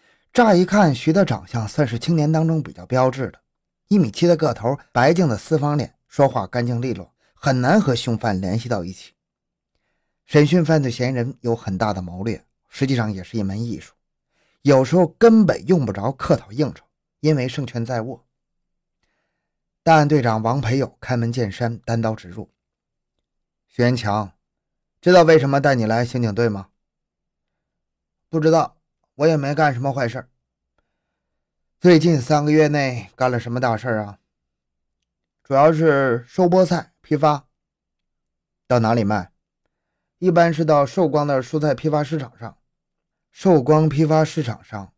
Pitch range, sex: 110-155 Hz, male